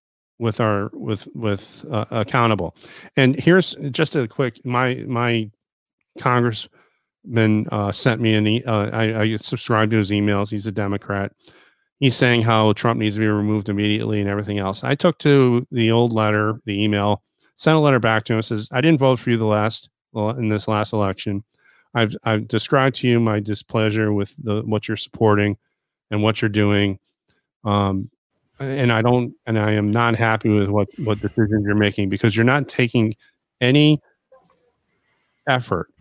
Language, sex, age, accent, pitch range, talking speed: English, male, 40-59, American, 105-125 Hz, 175 wpm